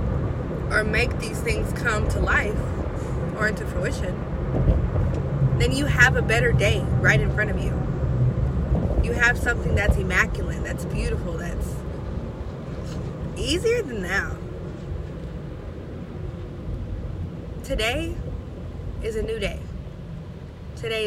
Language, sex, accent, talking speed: English, female, American, 110 wpm